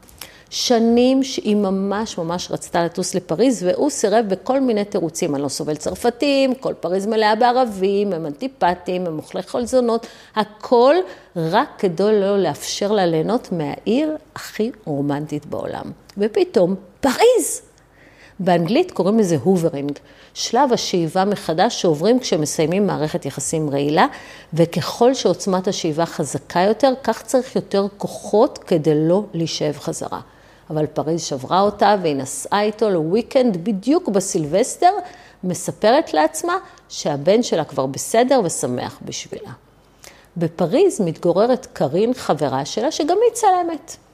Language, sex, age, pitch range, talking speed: Hebrew, female, 50-69, 165-240 Hz, 120 wpm